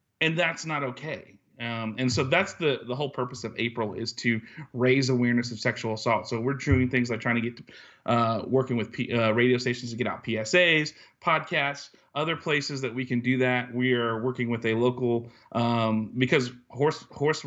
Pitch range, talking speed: 115-130 Hz, 205 wpm